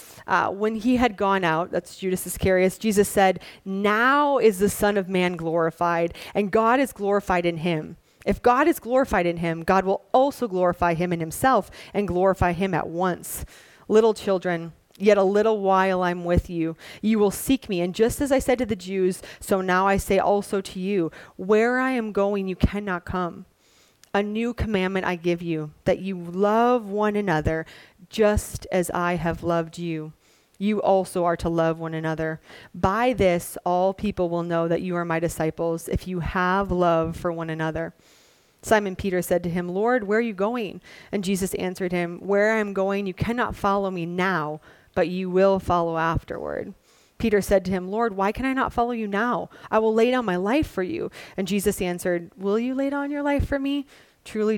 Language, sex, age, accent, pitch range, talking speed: English, female, 30-49, American, 175-205 Hz, 195 wpm